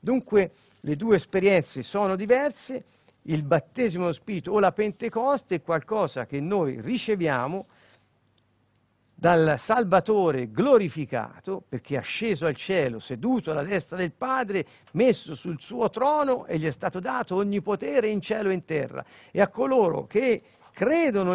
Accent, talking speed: native, 145 wpm